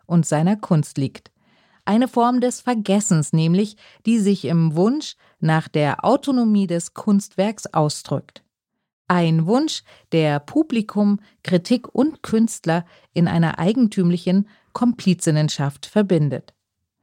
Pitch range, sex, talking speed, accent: 160-215 Hz, female, 110 wpm, German